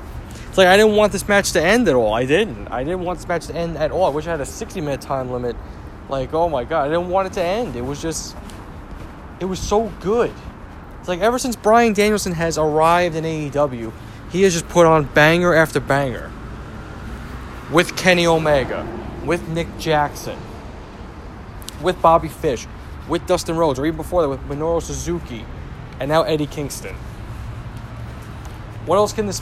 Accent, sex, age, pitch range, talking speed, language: American, male, 20-39, 135-195 Hz, 190 wpm, English